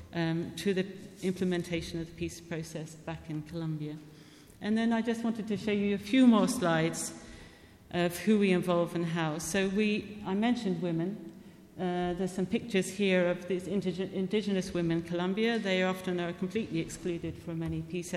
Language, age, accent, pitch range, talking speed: English, 50-69, British, 170-195 Hz, 170 wpm